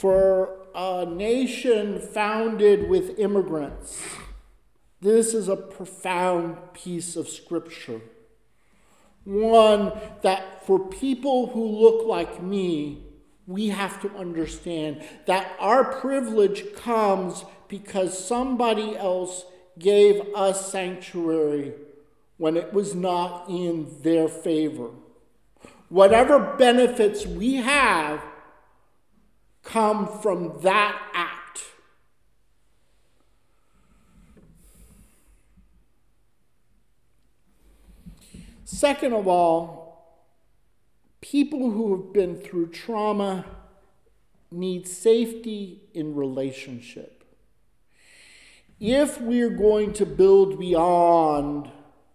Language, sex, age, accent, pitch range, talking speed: English, male, 50-69, American, 170-220 Hz, 80 wpm